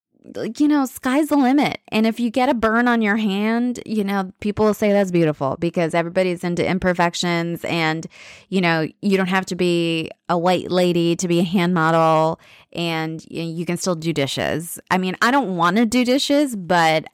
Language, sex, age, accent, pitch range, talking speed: English, female, 20-39, American, 170-210 Hz, 205 wpm